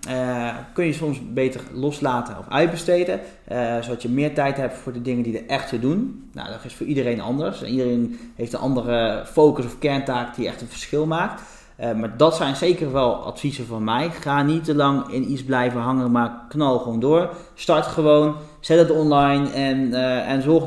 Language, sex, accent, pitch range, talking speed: Dutch, male, Dutch, 120-145 Hz, 205 wpm